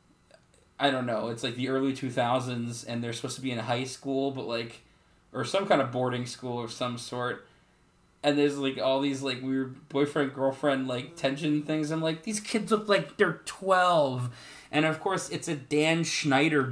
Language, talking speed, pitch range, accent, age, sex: English, 195 wpm, 130-155 Hz, American, 20-39, male